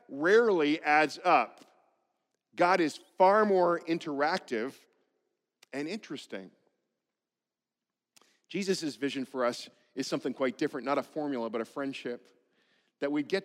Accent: American